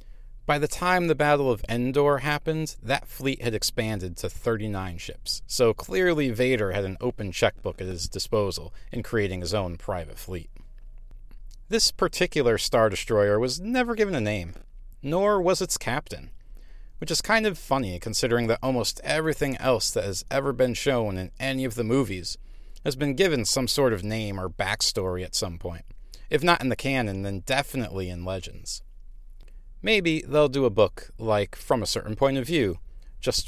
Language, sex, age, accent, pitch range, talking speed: English, male, 40-59, American, 95-145 Hz, 175 wpm